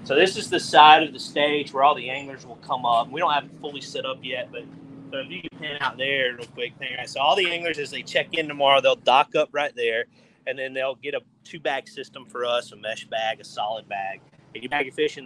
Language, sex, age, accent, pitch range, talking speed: English, male, 30-49, American, 115-155 Hz, 275 wpm